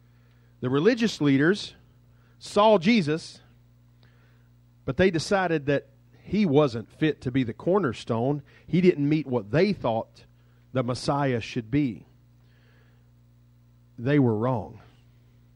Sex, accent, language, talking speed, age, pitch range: male, American, English, 110 wpm, 40-59, 120-150 Hz